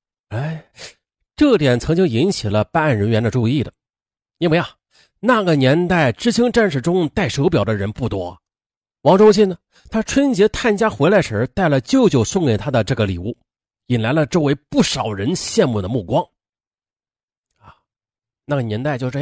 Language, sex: Chinese, male